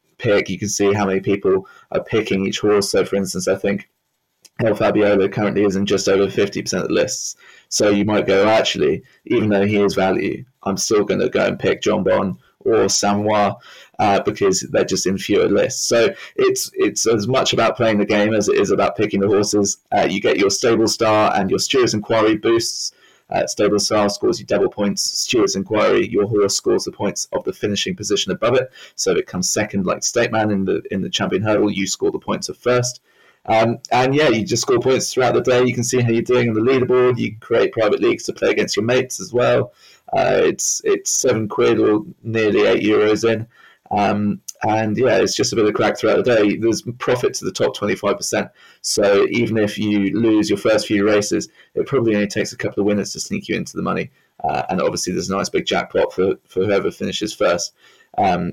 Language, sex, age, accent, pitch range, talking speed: English, male, 20-39, British, 105-125 Hz, 225 wpm